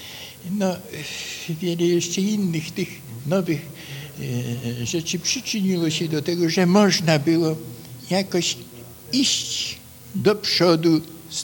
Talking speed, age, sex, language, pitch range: 105 wpm, 60-79, male, Polish, 140-185 Hz